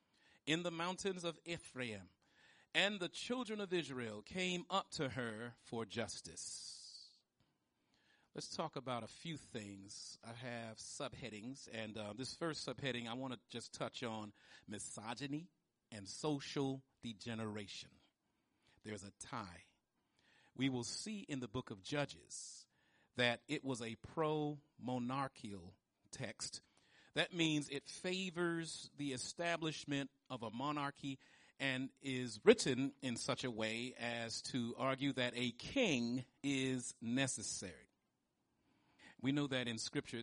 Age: 40-59